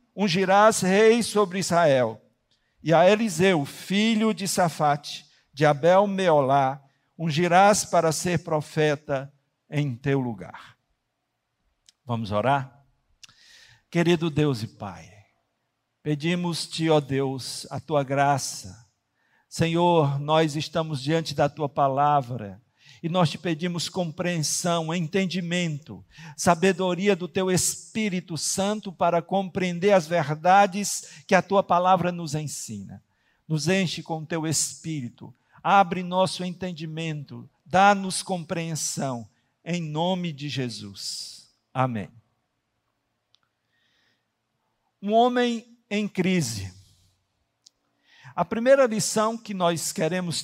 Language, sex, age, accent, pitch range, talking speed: Portuguese, male, 60-79, Brazilian, 140-185 Hz, 100 wpm